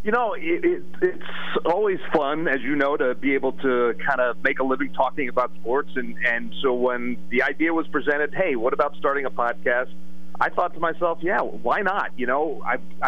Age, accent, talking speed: 40-59, American, 210 wpm